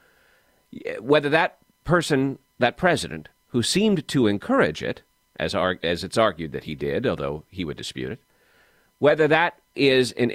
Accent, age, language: American, 40-59, English